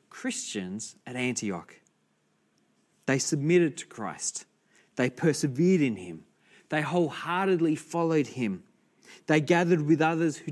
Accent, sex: Australian, male